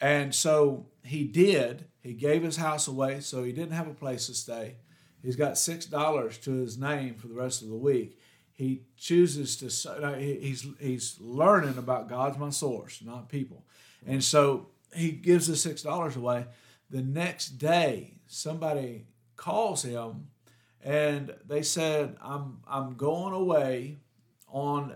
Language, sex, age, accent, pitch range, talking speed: English, male, 50-69, American, 130-155 Hz, 155 wpm